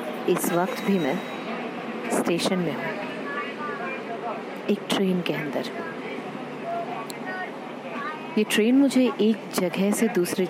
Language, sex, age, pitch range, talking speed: Hindi, female, 30-49, 175-215 Hz, 105 wpm